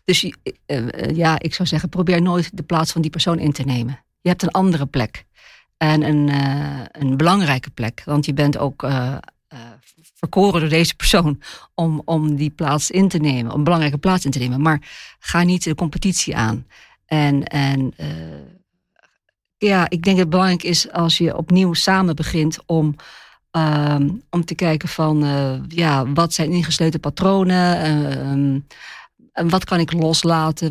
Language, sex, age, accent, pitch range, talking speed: Dutch, female, 50-69, Dutch, 145-175 Hz, 175 wpm